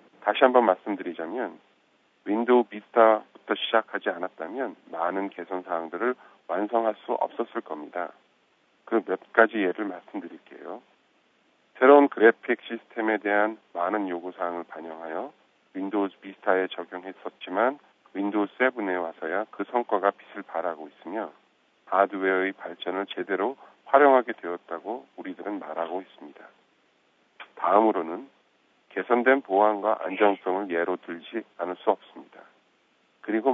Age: 50-69